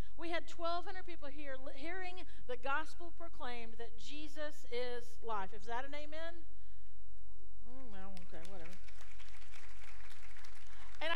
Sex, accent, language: female, American, English